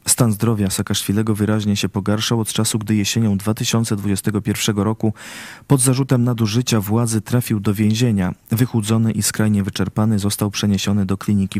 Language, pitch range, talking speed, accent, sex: Polish, 100-115 Hz, 140 wpm, native, male